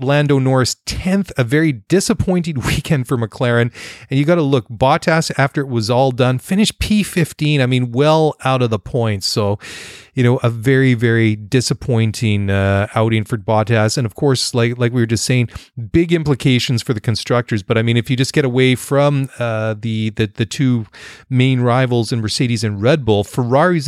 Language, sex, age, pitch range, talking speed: English, male, 30-49, 110-140 Hz, 190 wpm